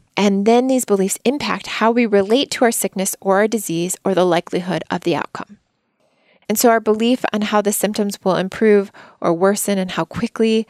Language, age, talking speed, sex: English, 20-39, 195 wpm, female